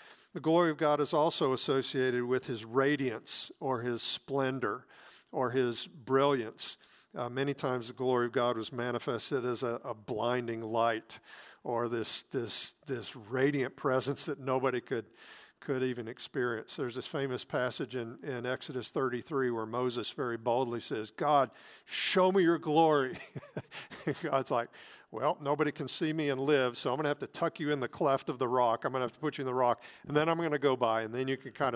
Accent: American